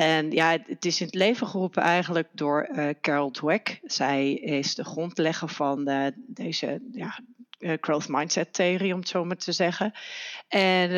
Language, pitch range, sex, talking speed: Dutch, 160-200 Hz, female, 170 wpm